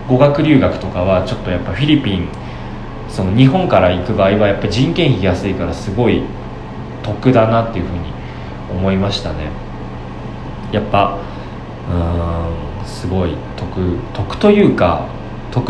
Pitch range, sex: 95-125 Hz, male